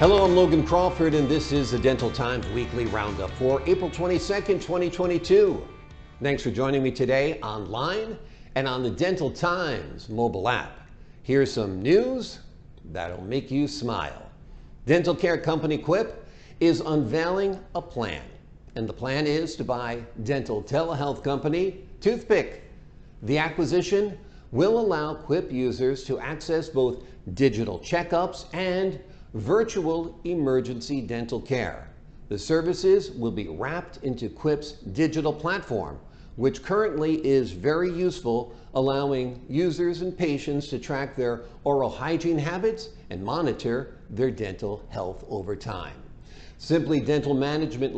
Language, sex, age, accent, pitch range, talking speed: English, male, 50-69, American, 120-165 Hz, 130 wpm